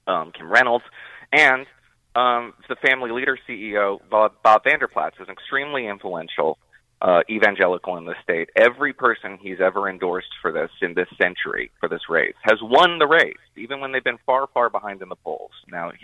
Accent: American